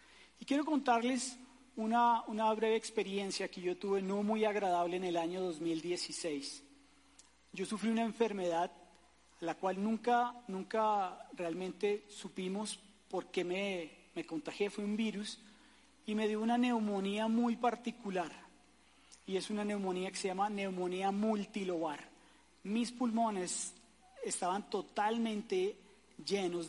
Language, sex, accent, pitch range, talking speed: Spanish, male, Colombian, 185-250 Hz, 120 wpm